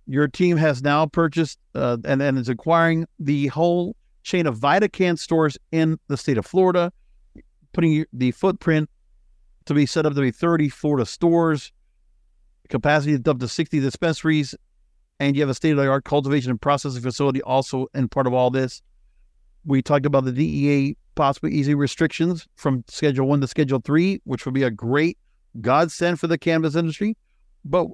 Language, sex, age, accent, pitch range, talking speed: English, male, 50-69, American, 125-160 Hz, 170 wpm